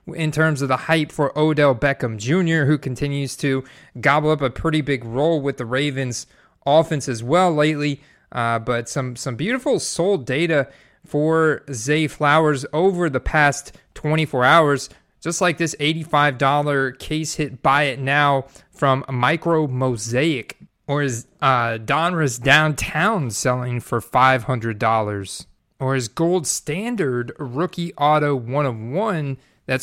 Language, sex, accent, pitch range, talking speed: English, male, American, 130-155 Hz, 140 wpm